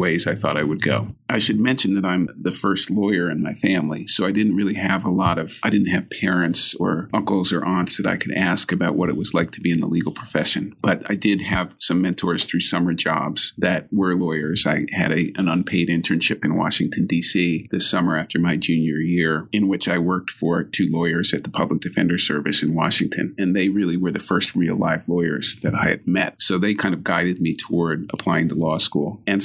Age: 40-59